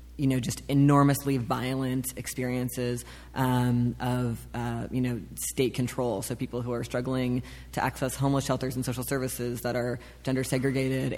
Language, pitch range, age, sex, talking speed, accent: English, 125-135 Hz, 20-39, female, 155 wpm, American